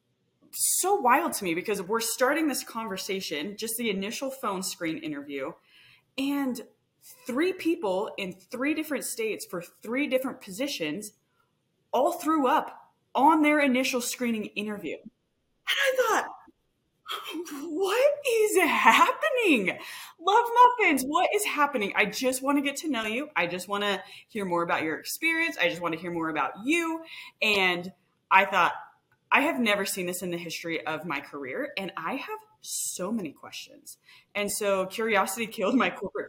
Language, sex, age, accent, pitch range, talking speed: English, female, 20-39, American, 180-275 Hz, 155 wpm